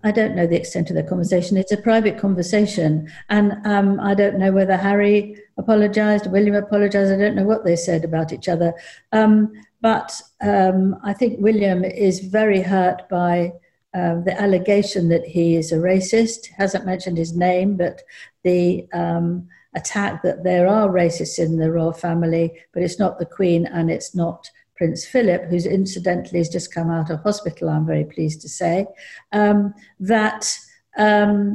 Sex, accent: female, British